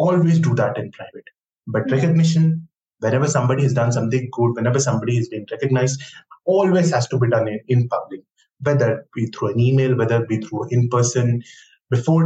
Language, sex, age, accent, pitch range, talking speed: English, male, 20-39, Indian, 125-155 Hz, 190 wpm